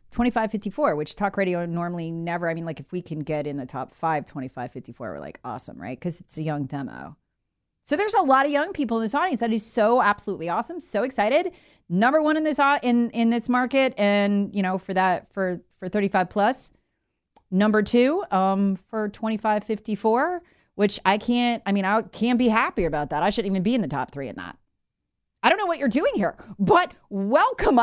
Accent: American